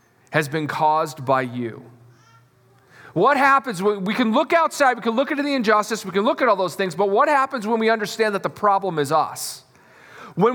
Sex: male